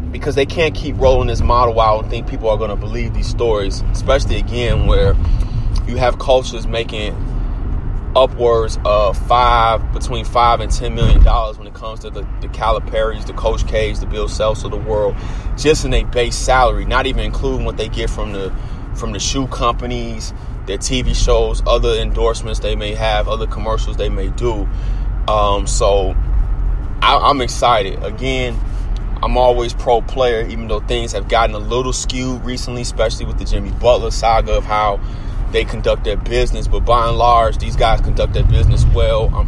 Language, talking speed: English, 185 wpm